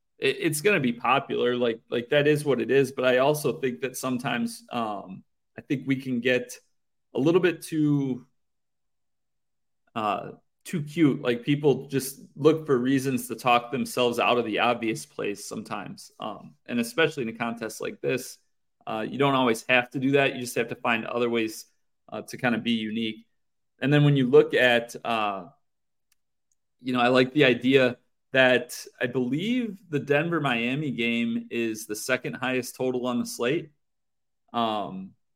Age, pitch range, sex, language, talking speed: 30-49, 120-145 Hz, male, English, 175 wpm